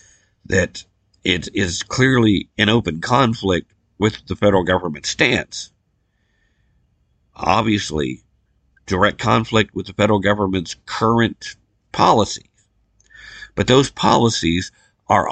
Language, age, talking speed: English, 50-69, 100 wpm